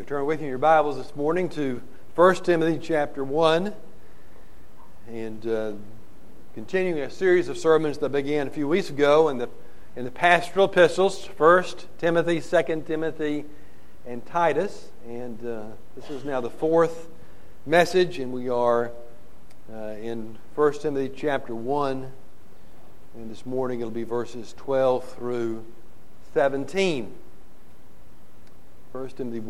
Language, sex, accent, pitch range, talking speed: English, male, American, 120-160 Hz, 135 wpm